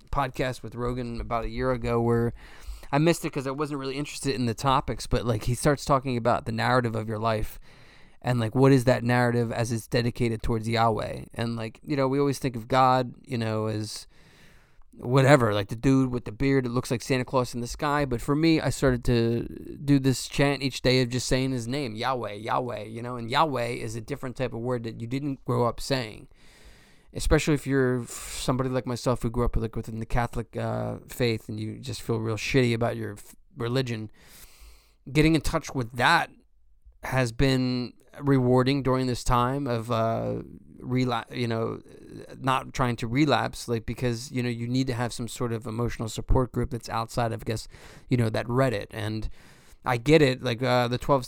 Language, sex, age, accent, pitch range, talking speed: English, male, 20-39, American, 115-130 Hz, 210 wpm